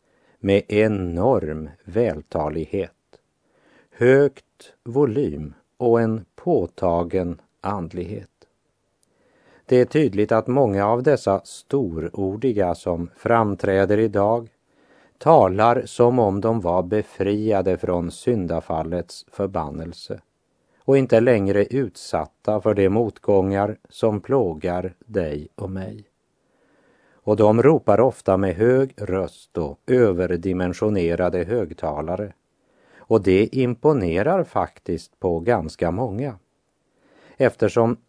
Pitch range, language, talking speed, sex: 90-120 Hz, Russian, 95 wpm, male